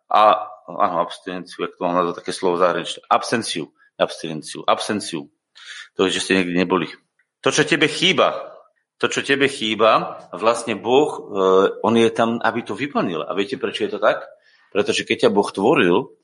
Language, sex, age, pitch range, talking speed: Slovak, male, 40-59, 105-145 Hz, 160 wpm